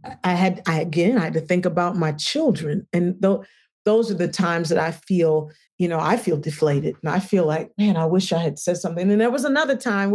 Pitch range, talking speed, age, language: 165-210 Hz, 240 wpm, 40-59, English